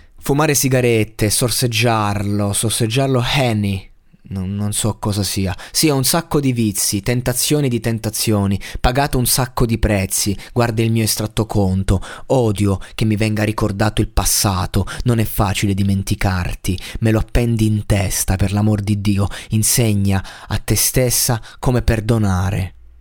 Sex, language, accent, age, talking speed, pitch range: male, Italian, native, 20-39, 145 wpm, 100-115 Hz